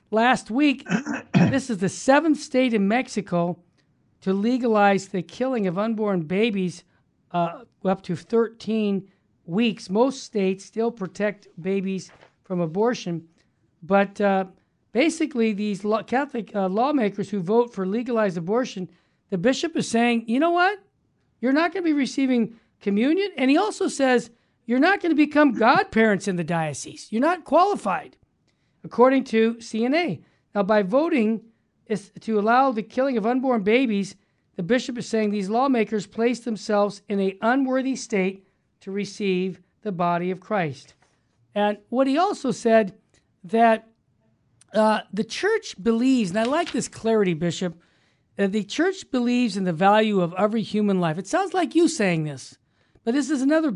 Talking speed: 155 wpm